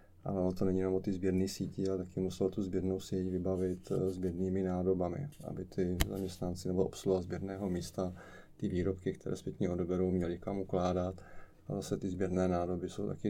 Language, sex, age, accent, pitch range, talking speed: Czech, male, 30-49, native, 90-100 Hz, 175 wpm